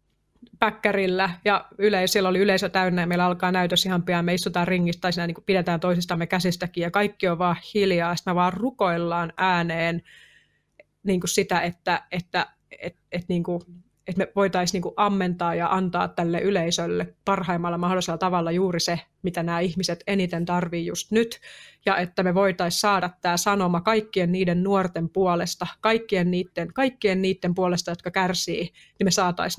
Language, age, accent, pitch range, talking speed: Finnish, 30-49, native, 175-200 Hz, 160 wpm